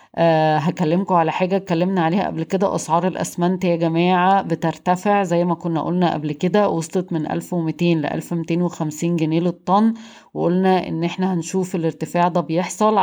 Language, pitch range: Arabic, 165-185 Hz